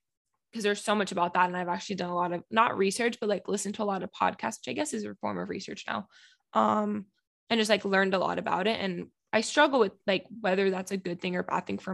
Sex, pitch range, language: female, 185-220 Hz, English